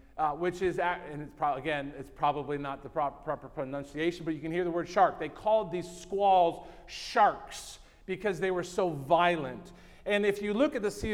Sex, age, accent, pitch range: male, 40-59, American, 165-200 Hz